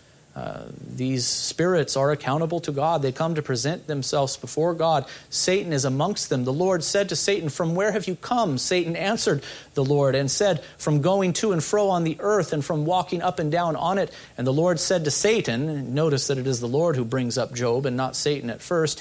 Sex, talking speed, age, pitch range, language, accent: male, 225 wpm, 40-59, 140-185 Hz, English, American